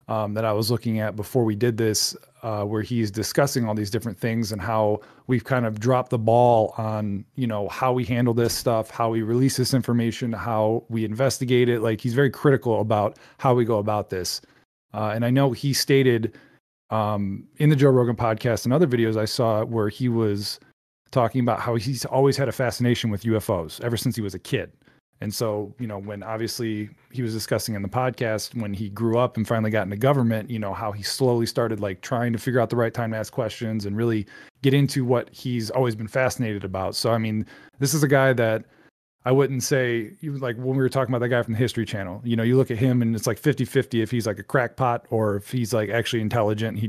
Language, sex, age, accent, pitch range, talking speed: English, male, 30-49, American, 110-125 Hz, 235 wpm